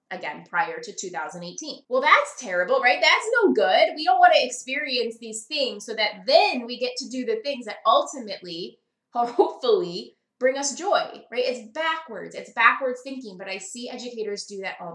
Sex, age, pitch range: female, 20-39, 220-300 Hz